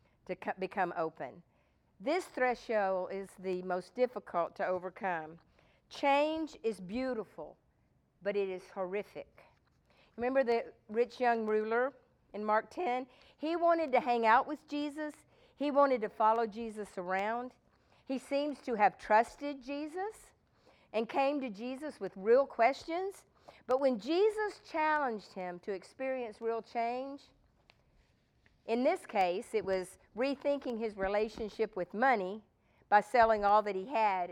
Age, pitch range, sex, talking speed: 50-69, 185-260 Hz, female, 135 wpm